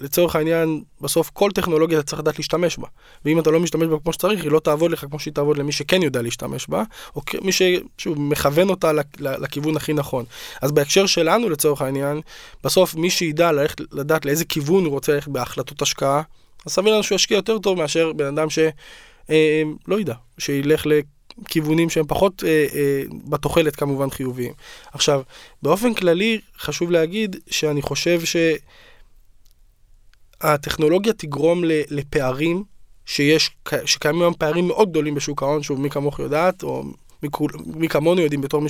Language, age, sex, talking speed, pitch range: Hebrew, 20-39, male, 170 wpm, 145-170 Hz